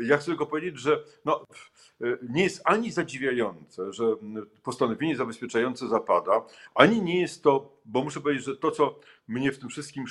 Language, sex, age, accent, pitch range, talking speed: Polish, male, 50-69, native, 115-145 Hz, 160 wpm